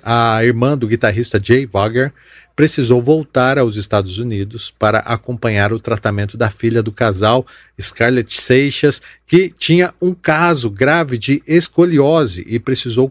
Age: 40-59